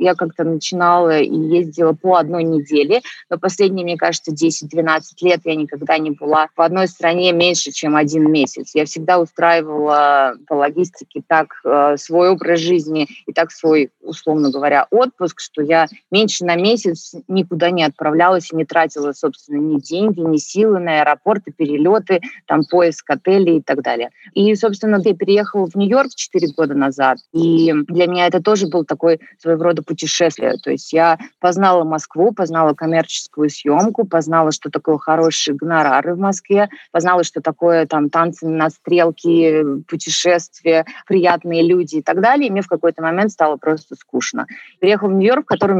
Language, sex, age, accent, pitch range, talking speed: Russian, female, 20-39, native, 155-180 Hz, 165 wpm